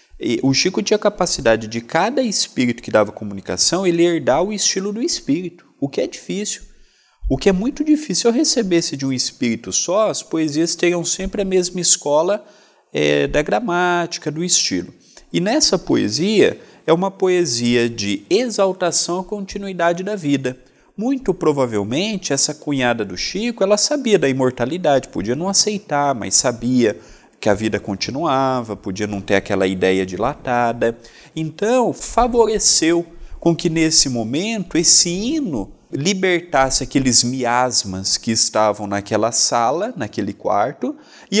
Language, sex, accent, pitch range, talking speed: Portuguese, male, Brazilian, 125-200 Hz, 145 wpm